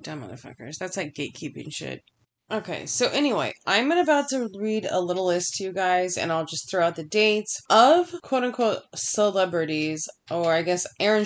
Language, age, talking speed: English, 20-39, 175 wpm